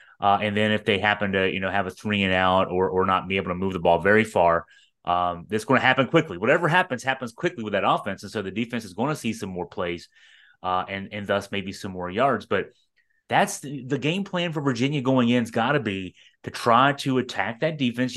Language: English